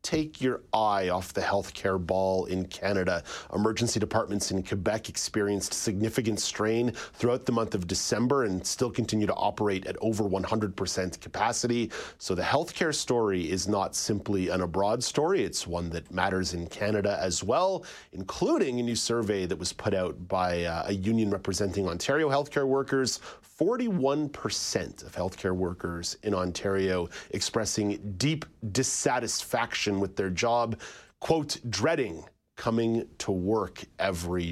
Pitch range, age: 95-125 Hz, 30-49